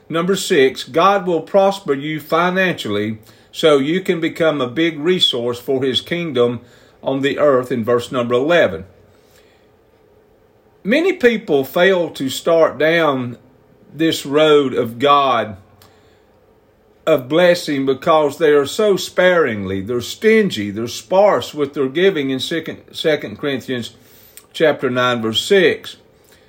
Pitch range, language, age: 130-185 Hz, English, 50-69